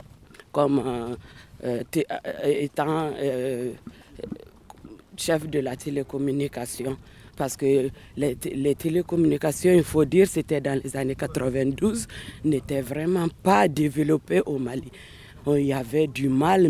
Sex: female